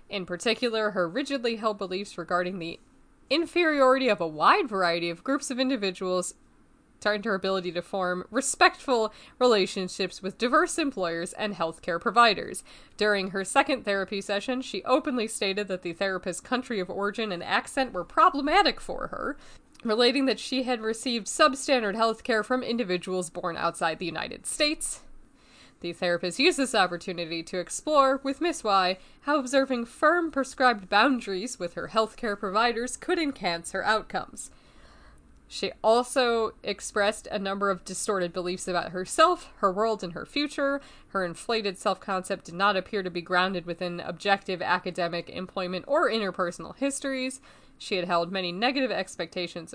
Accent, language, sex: American, English, female